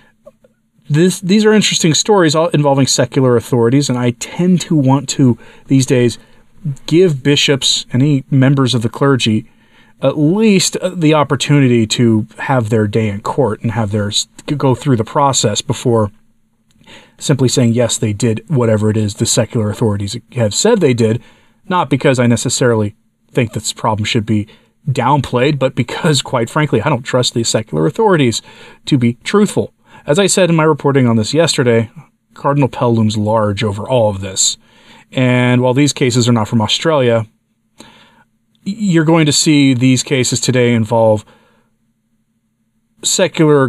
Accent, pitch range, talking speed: American, 115-140 Hz, 155 wpm